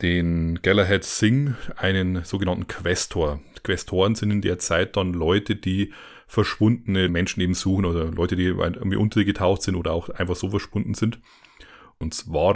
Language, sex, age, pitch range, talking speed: German, male, 30-49, 85-105 Hz, 155 wpm